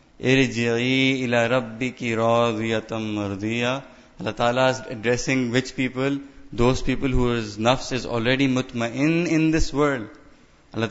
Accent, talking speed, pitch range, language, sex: Indian, 100 wpm, 125-155 Hz, English, male